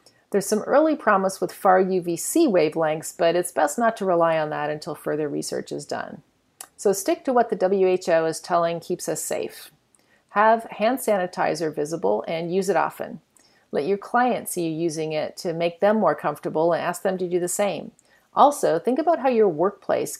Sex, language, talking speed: female, English, 190 wpm